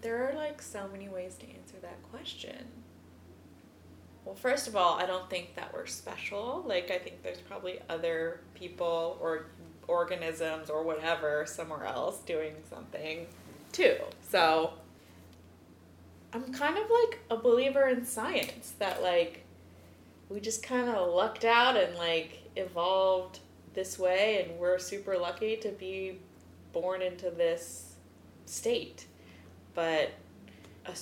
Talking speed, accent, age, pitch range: 135 wpm, American, 20-39, 160-235 Hz